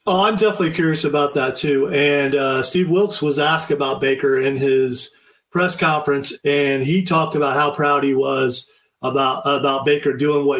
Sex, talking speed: male, 180 wpm